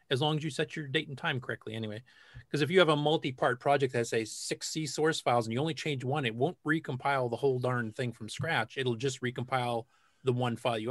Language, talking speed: English, 245 wpm